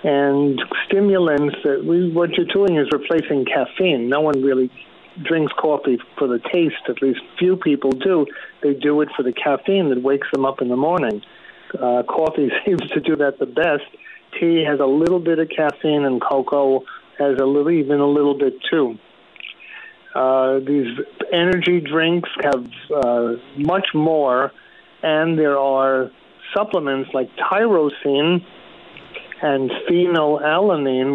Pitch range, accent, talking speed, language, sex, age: 135-165 Hz, American, 150 wpm, English, male, 50-69